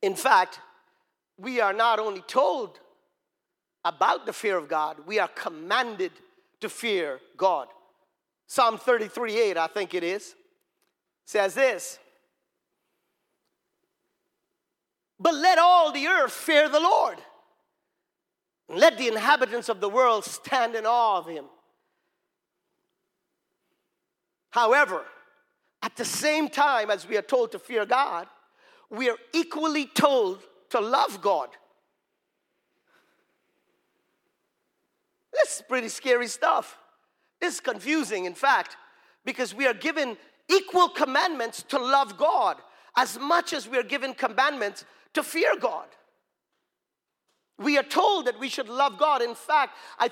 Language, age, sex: English, 50-69, male